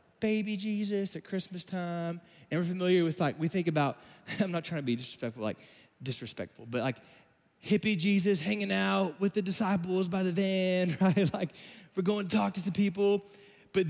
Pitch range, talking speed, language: 170-215 Hz, 185 wpm, English